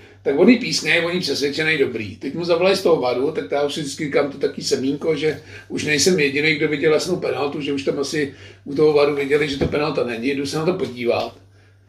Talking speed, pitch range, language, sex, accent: 225 wpm, 135-180 Hz, Czech, male, native